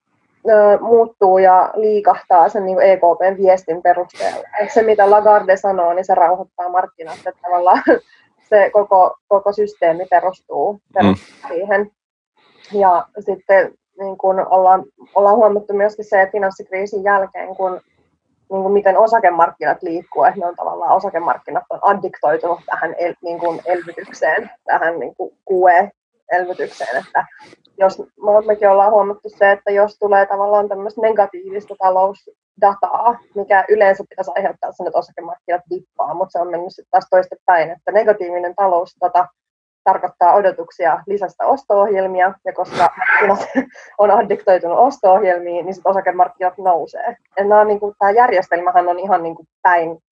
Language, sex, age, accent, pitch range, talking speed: Finnish, female, 20-39, native, 180-205 Hz, 125 wpm